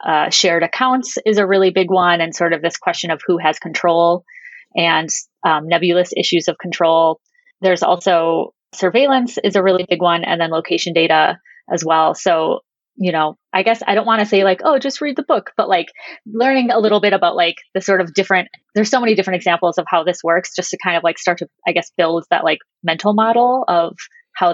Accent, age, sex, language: American, 30-49, female, English